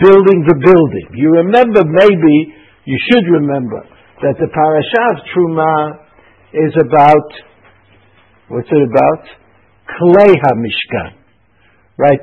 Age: 60-79